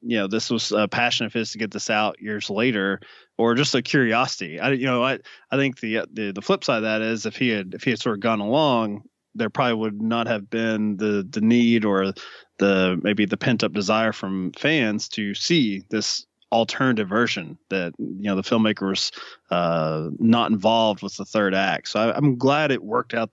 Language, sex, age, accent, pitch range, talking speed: English, male, 20-39, American, 95-115 Hz, 215 wpm